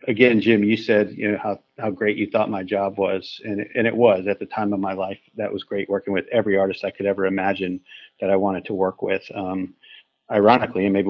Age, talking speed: 50-69, 245 wpm